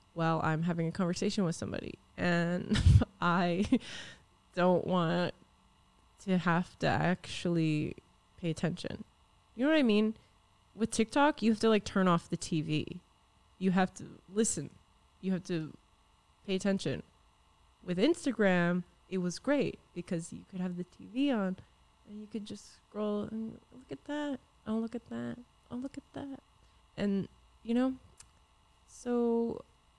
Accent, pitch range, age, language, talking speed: American, 175-235 Hz, 20-39, English, 150 wpm